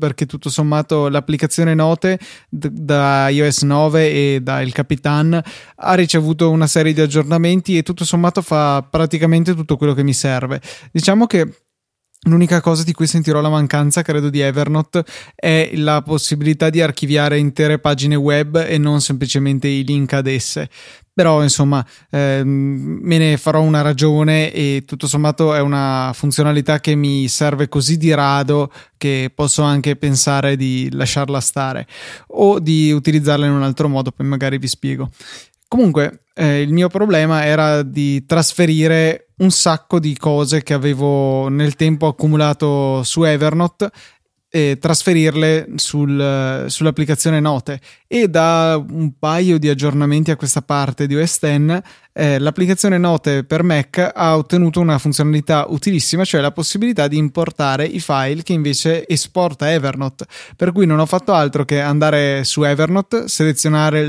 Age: 20-39